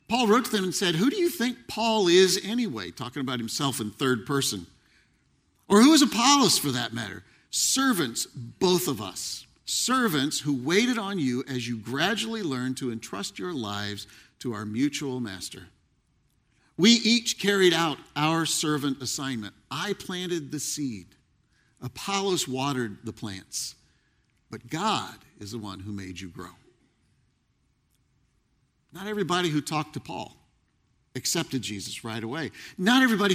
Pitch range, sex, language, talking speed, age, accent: 125-195 Hz, male, English, 150 wpm, 50-69, American